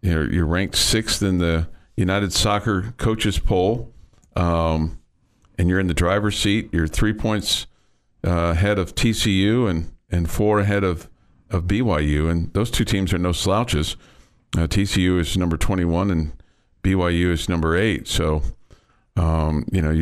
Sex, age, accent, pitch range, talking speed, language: male, 50-69, American, 85-100 Hz, 155 wpm, English